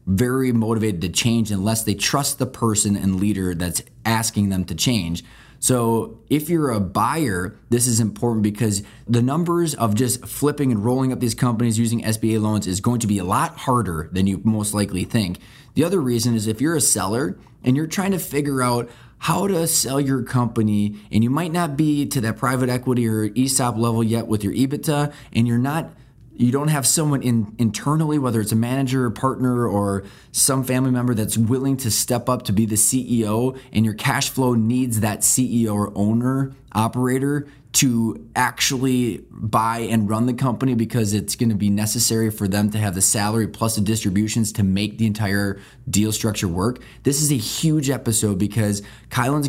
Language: English